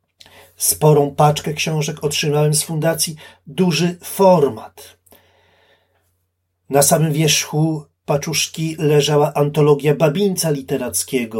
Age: 40-59